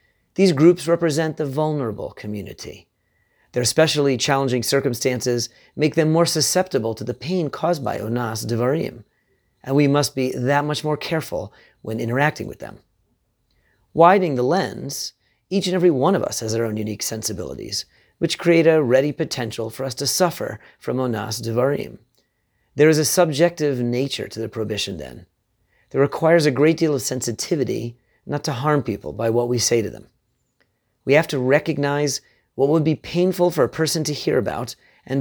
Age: 40-59